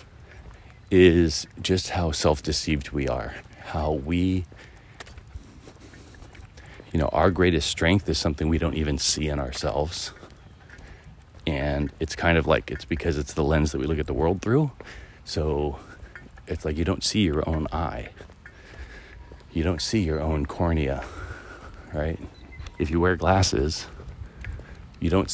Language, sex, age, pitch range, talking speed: English, male, 40-59, 75-90 Hz, 140 wpm